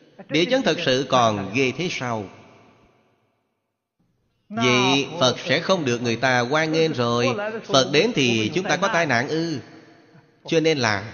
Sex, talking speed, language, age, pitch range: male, 165 wpm, Vietnamese, 30-49, 120-150 Hz